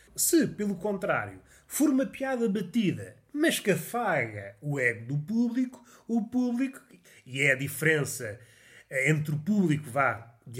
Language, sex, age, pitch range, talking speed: Portuguese, male, 30-49, 140-210 Hz, 140 wpm